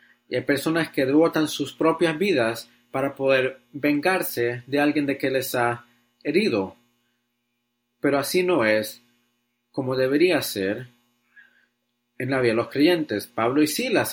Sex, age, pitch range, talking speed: male, 40-59, 120-145 Hz, 145 wpm